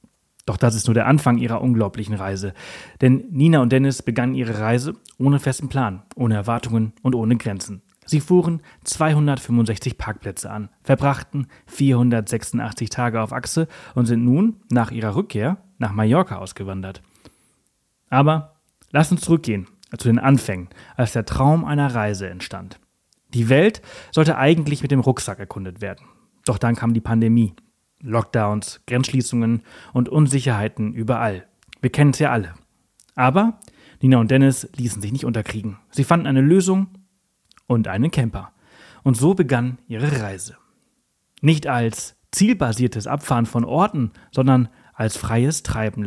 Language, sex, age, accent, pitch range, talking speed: German, male, 30-49, German, 110-140 Hz, 145 wpm